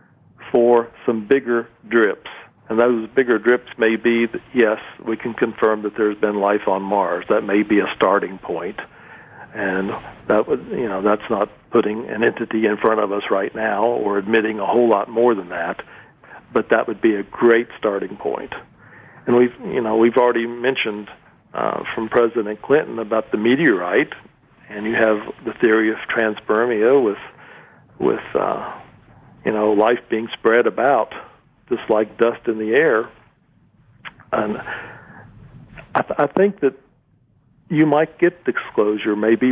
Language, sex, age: English, male, 50-69